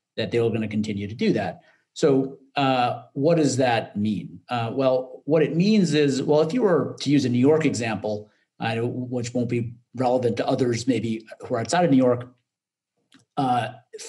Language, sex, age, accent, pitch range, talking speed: English, male, 40-59, American, 115-150 Hz, 185 wpm